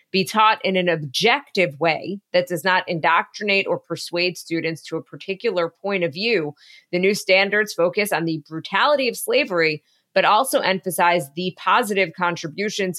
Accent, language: American, English